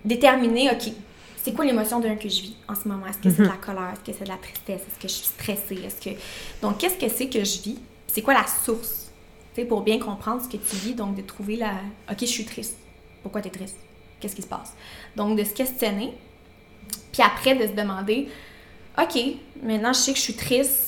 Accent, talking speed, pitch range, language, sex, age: Canadian, 235 wpm, 200-230 Hz, French, female, 20-39